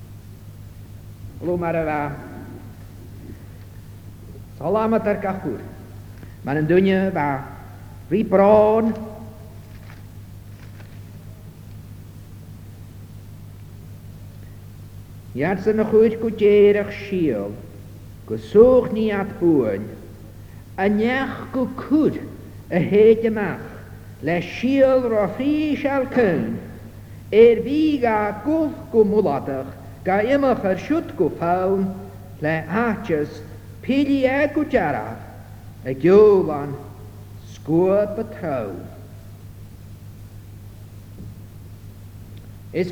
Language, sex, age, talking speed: English, male, 60-79, 50 wpm